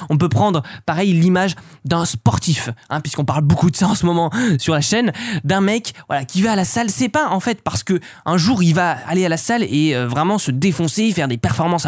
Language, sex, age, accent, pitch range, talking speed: French, male, 20-39, French, 135-185 Hz, 250 wpm